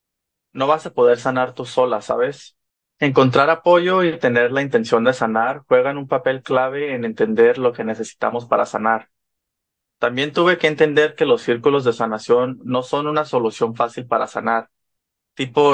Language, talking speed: English, 170 wpm